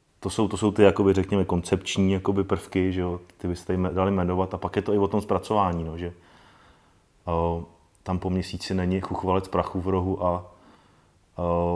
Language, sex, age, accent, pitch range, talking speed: Czech, male, 30-49, native, 90-105 Hz, 195 wpm